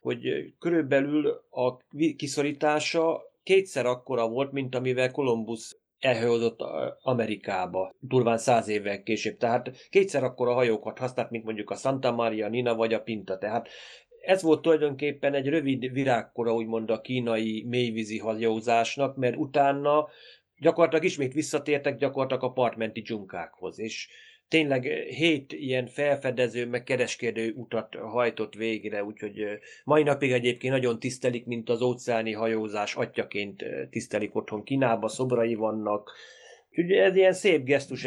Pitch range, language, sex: 110-140 Hz, Hungarian, male